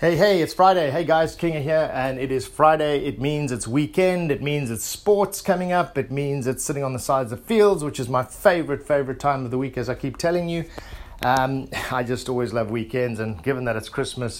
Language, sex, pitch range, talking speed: English, male, 115-140 Hz, 235 wpm